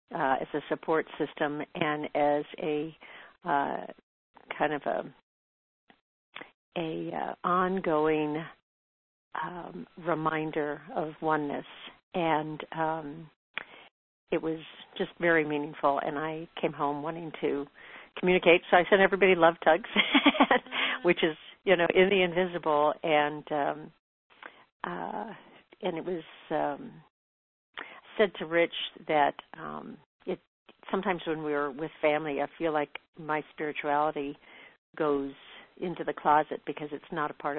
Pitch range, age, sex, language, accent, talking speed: 145-165 Hz, 50-69, female, English, American, 125 wpm